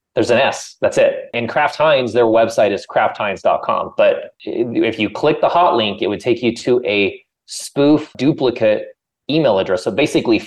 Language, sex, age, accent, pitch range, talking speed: English, male, 20-39, American, 110-190 Hz, 185 wpm